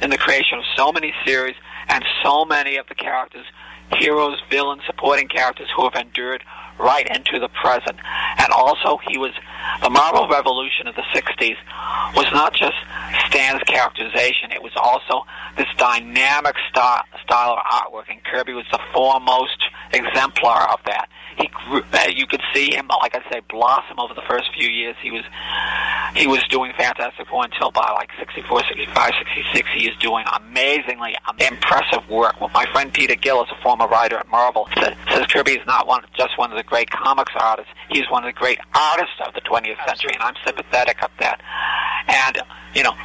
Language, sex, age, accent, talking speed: English, male, 50-69, American, 185 wpm